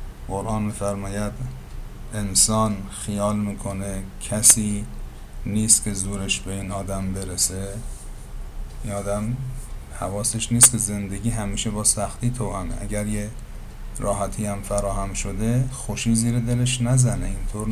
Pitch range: 100-115 Hz